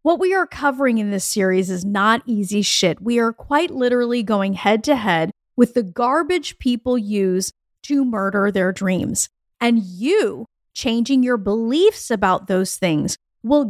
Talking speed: 160 wpm